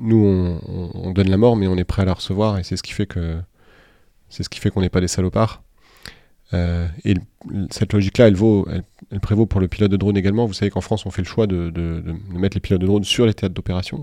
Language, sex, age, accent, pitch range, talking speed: French, male, 30-49, French, 90-110 Hz, 275 wpm